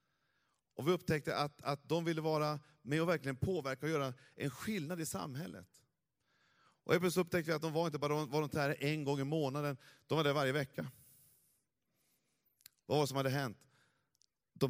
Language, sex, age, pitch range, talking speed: Swedish, male, 30-49, 130-165 Hz, 190 wpm